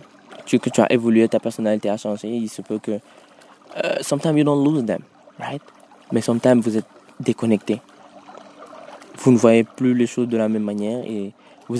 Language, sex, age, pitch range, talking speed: French, male, 20-39, 110-130 Hz, 185 wpm